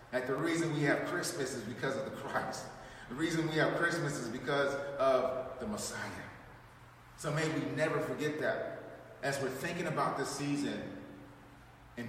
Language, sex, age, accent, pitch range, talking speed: English, male, 30-49, American, 125-160 Hz, 170 wpm